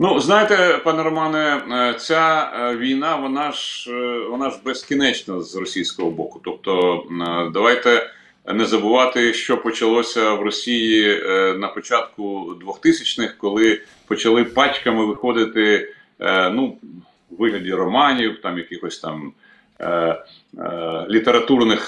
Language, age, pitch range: Ukrainian, 40-59, 95-125 Hz